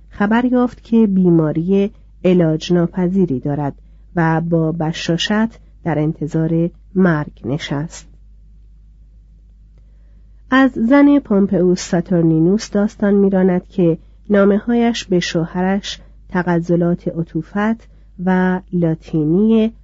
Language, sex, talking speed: Persian, female, 85 wpm